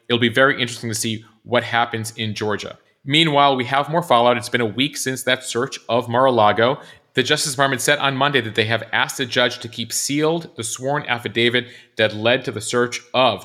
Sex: male